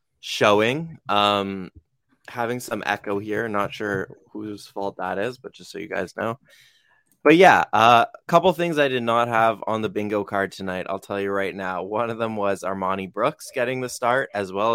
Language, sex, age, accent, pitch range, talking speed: English, male, 20-39, American, 105-125 Hz, 200 wpm